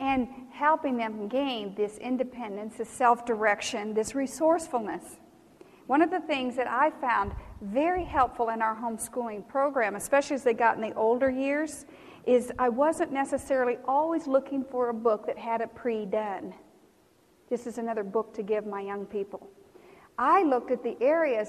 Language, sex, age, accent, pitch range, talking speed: English, female, 50-69, American, 220-275 Hz, 160 wpm